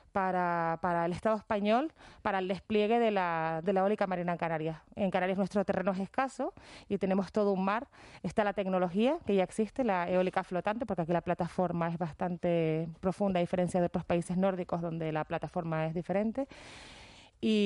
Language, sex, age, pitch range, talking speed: Spanish, female, 30-49, 180-215 Hz, 185 wpm